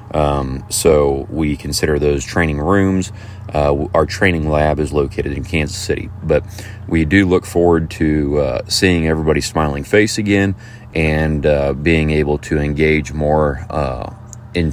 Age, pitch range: 30-49, 75-90 Hz